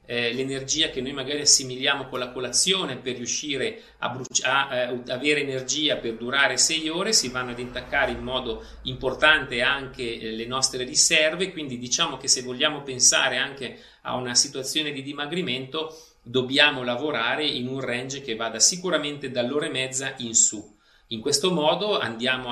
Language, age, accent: Italian, 40-59, native